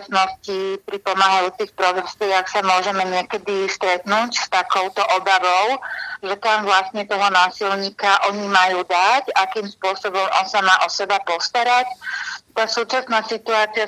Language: Slovak